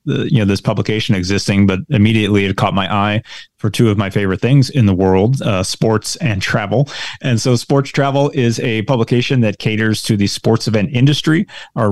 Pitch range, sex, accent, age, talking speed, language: 100-125 Hz, male, American, 30-49, 195 wpm, English